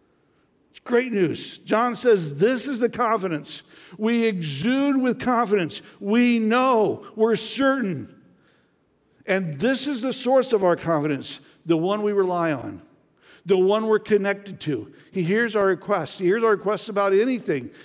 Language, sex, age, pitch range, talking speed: English, male, 60-79, 150-210 Hz, 150 wpm